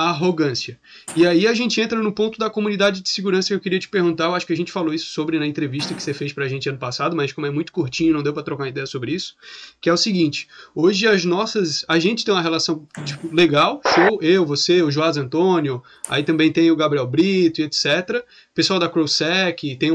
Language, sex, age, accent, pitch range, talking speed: Portuguese, male, 20-39, Brazilian, 155-190 Hz, 230 wpm